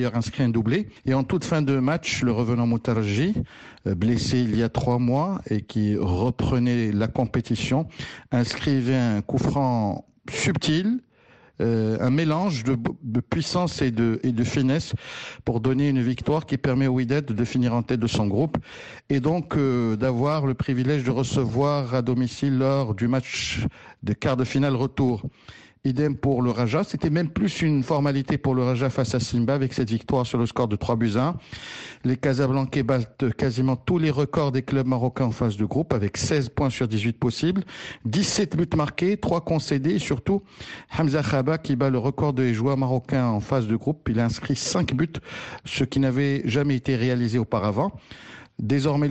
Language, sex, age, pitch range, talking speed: French, male, 60-79, 120-145 Hz, 180 wpm